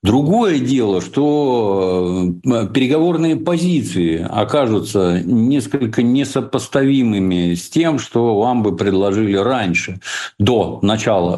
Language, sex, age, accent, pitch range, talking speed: Russian, male, 50-69, native, 95-140 Hz, 90 wpm